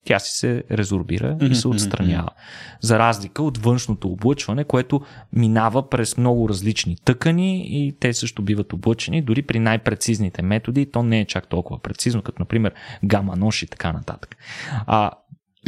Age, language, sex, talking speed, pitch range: 30-49, Bulgarian, male, 155 wpm, 100-140 Hz